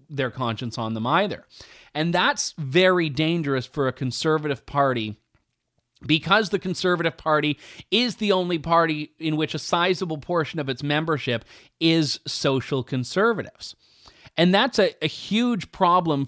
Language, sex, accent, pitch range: English, male, American, 135-180 Hz